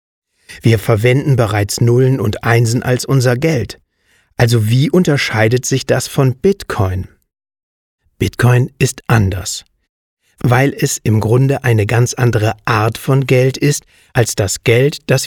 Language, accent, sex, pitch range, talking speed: German, German, male, 110-135 Hz, 135 wpm